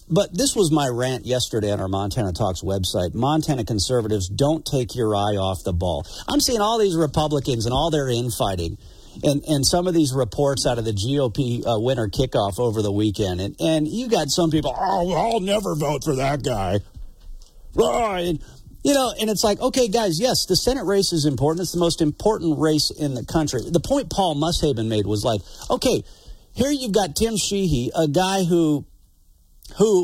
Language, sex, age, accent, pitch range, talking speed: English, male, 50-69, American, 125-185 Hz, 200 wpm